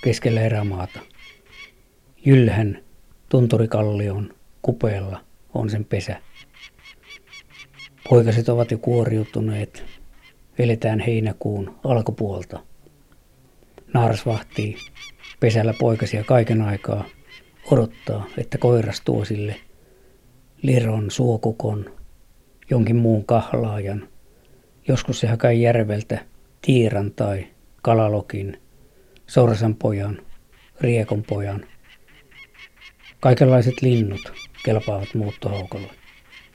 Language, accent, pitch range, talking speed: Finnish, native, 100-120 Hz, 75 wpm